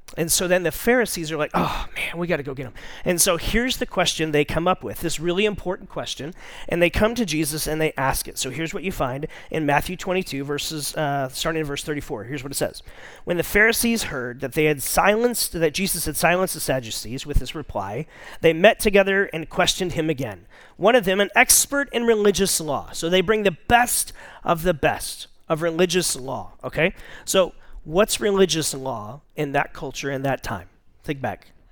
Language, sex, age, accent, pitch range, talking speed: English, male, 40-59, American, 145-185 Hz, 210 wpm